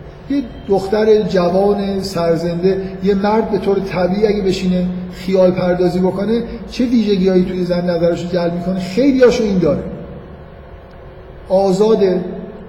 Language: Persian